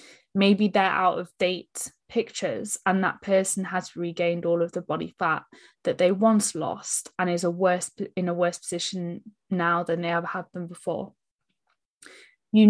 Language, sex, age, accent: English, female, 10-29, British